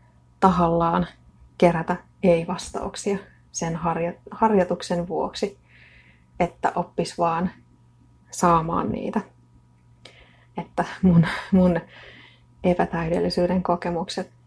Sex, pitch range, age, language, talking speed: female, 155-185 Hz, 30-49, Finnish, 70 wpm